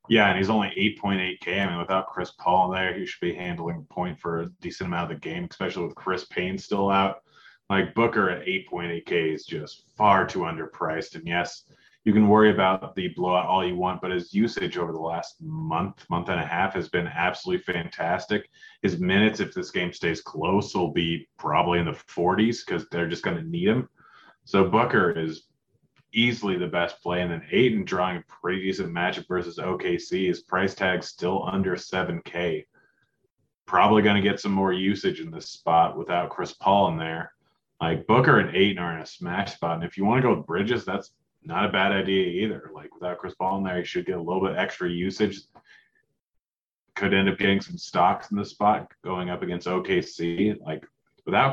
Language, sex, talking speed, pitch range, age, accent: English, male, 205 wpm, 85-105 Hz, 30-49, American